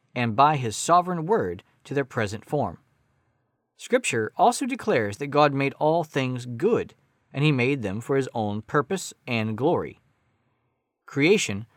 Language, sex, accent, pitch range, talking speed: English, male, American, 110-155 Hz, 150 wpm